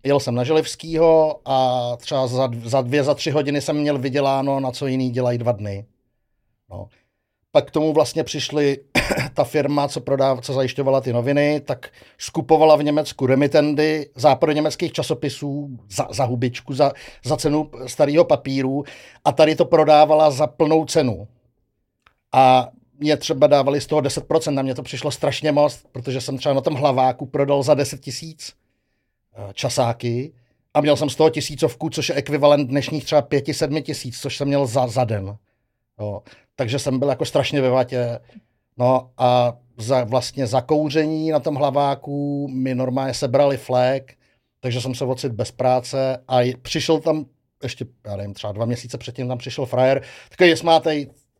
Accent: native